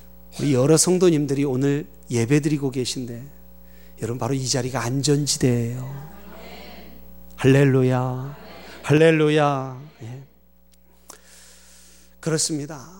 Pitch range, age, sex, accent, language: 125-185 Hz, 40-59, male, native, Korean